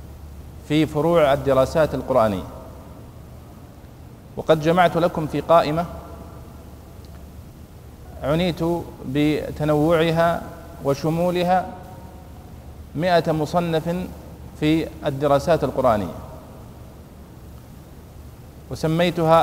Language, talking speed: Arabic, 55 wpm